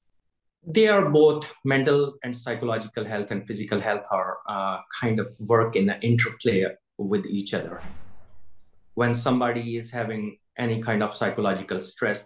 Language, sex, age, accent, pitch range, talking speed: English, male, 30-49, Indian, 100-120 Hz, 145 wpm